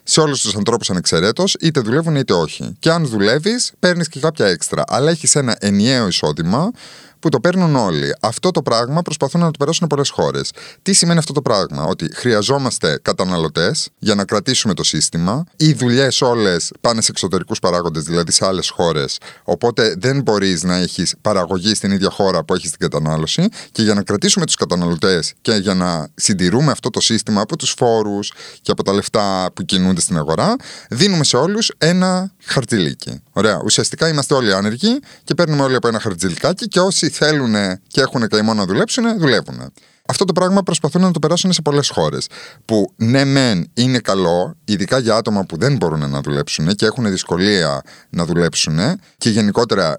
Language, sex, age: Greek, male, 30-49